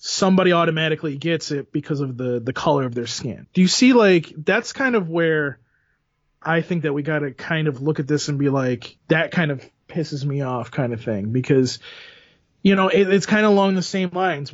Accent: American